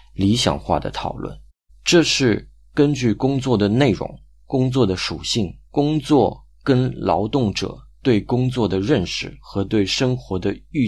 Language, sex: Chinese, male